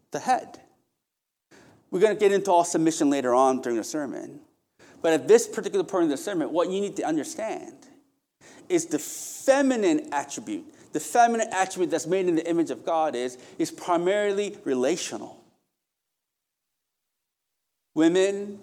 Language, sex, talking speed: English, male, 145 wpm